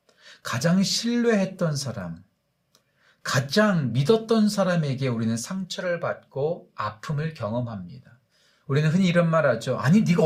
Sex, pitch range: male, 125-175 Hz